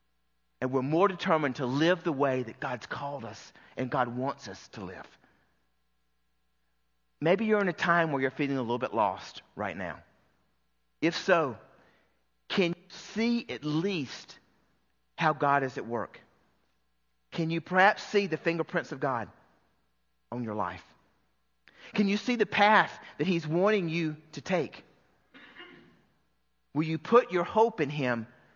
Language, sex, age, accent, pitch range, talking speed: English, male, 40-59, American, 115-175 Hz, 155 wpm